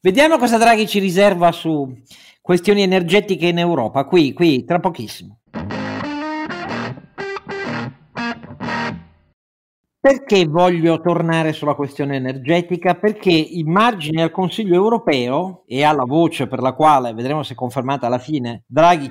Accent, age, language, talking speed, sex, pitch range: native, 50-69, Italian, 120 wpm, male, 130-175 Hz